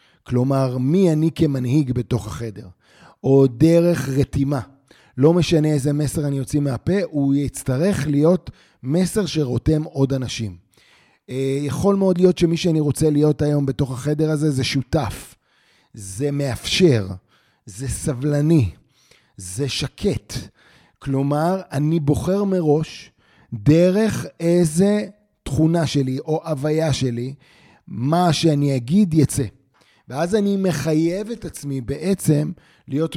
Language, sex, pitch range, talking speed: Hebrew, male, 135-165 Hz, 115 wpm